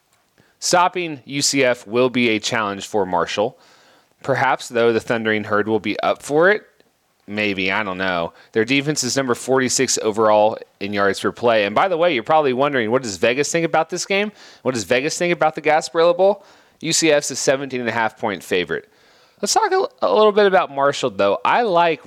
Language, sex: English, male